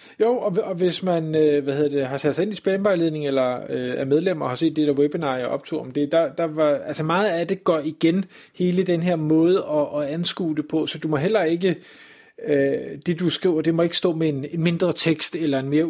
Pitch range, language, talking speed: 140-170 Hz, Danish, 245 wpm